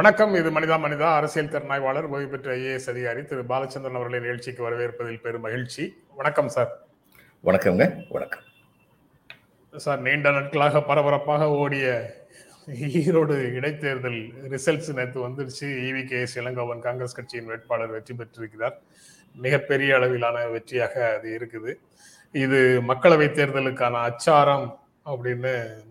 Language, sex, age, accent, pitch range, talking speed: Tamil, male, 30-49, native, 120-140 Hz, 115 wpm